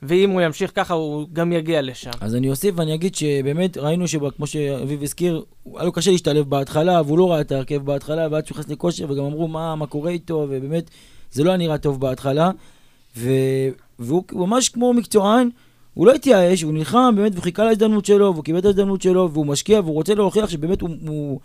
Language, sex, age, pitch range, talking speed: Hebrew, male, 20-39, 145-200 Hz, 190 wpm